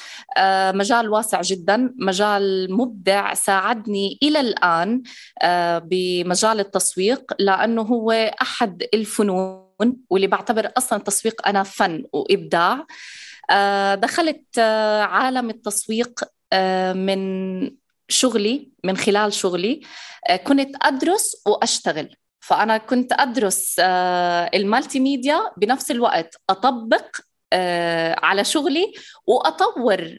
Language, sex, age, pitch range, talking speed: Arabic, female, 20-39, 195-275 Hz, 85 wpm